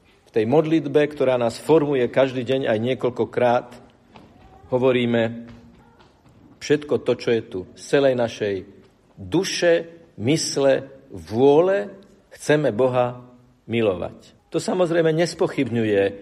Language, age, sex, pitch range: Slovak, 50-69, male, 115-150 Hz